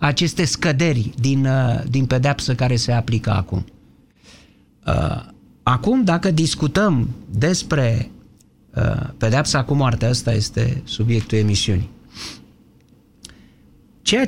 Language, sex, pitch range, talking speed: Romanian, male, 120-195 Hz, 90 wpm